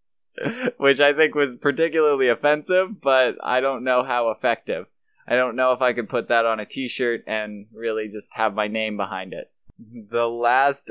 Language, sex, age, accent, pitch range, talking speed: English, male, 20-39, American, 115-145 Hz, 180 wpm